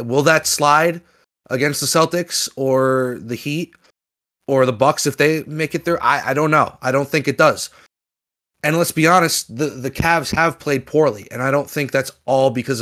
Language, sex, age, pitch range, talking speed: English, male, 30-49, 125-160 Hz, 200 wpm